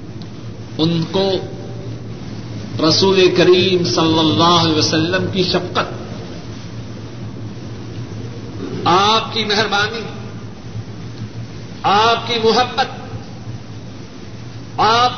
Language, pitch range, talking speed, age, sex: Urdu, 110-175 Hz, 65 wpm, 50-69, male